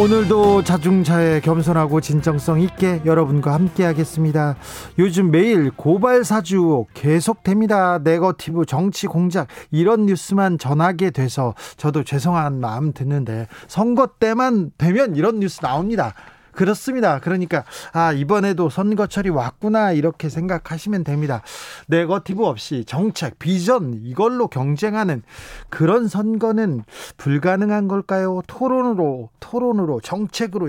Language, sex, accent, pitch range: Korean, male, native, 150-195 Hz